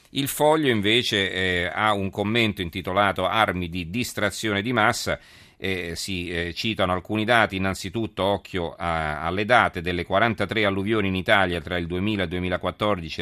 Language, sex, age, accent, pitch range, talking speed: Italian, male, 40-59, native, 85-105 Hz, 165 wpm